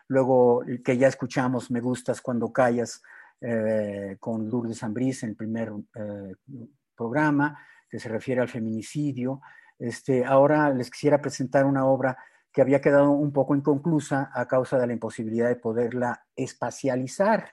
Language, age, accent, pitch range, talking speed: Spanish, 50-69, Mexican, 115-140 Hz, 145 wpm